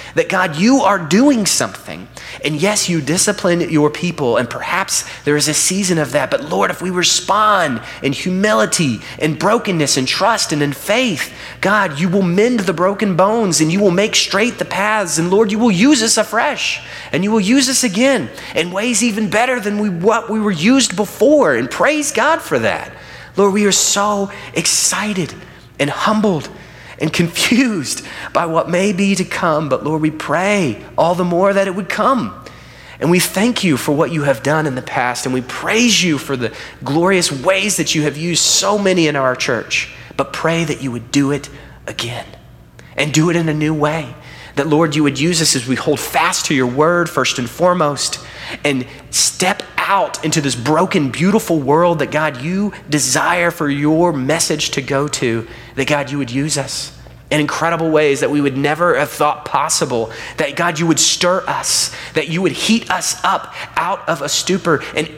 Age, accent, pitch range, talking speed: 30-49, American, 150-200 Hz, 195 wpm